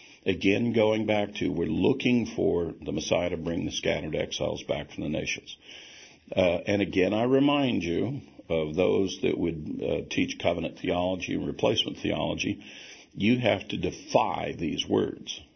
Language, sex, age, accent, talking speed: English, male, 50-69, American, 160 wpm